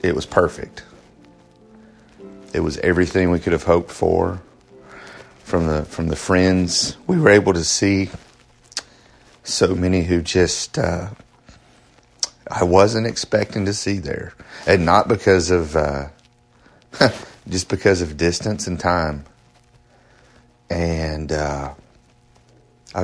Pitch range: 80-100 Hz